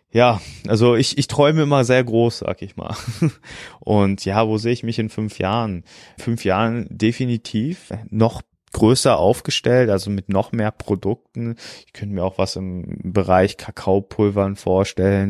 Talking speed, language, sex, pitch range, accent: 155 wpm, German, male, 95-115 Hz, German